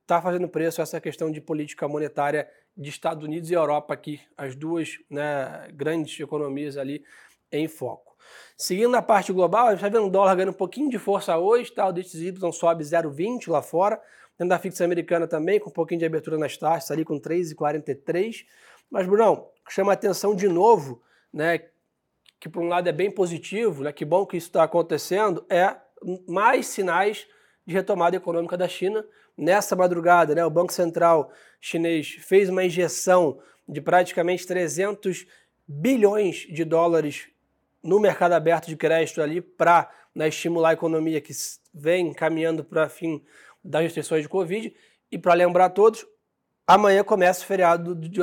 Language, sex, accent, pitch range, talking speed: Portuguese, male, Brazilian, 155-185 Hz, 170 wpm